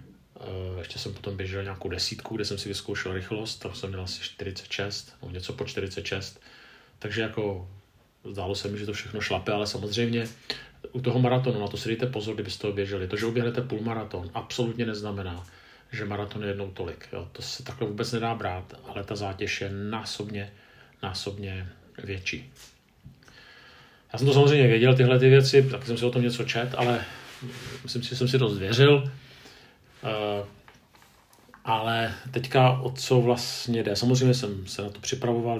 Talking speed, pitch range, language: 170 wpm, 100-120 Hz, Czech